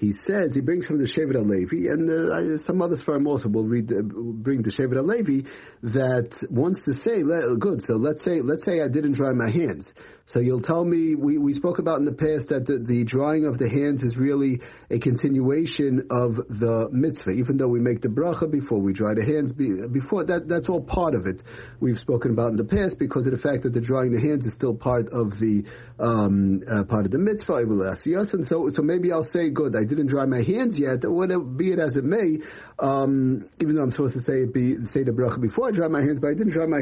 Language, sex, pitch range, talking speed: English, male, 120-155 Hz, 250 wpm